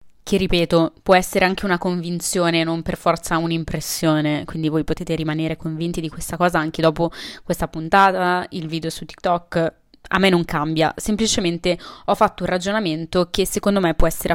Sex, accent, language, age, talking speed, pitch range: female, native, Italian, 20-39, 175 wpm, 165-195 Hz